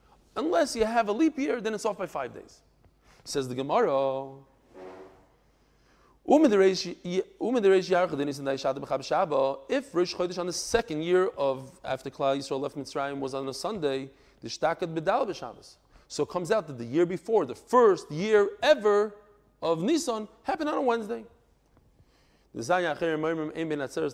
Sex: male